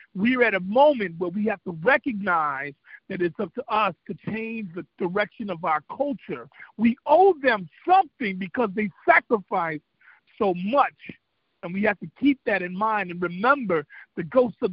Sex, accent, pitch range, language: male, American, 185-245 Hz, English